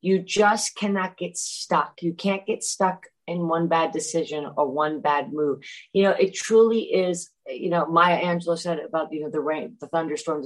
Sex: female